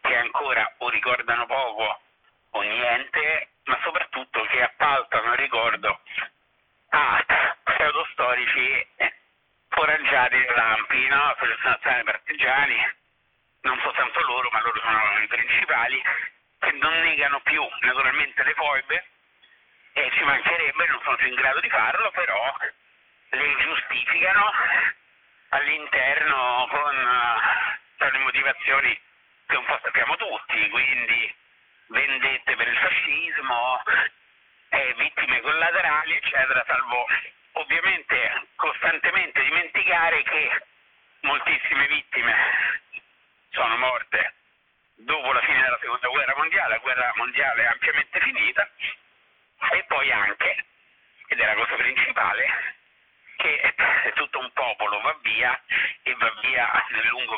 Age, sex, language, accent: 50-69, male, Italian, native